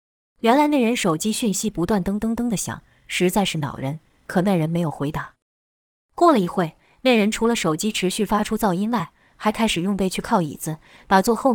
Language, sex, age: Chinese, female, 20-39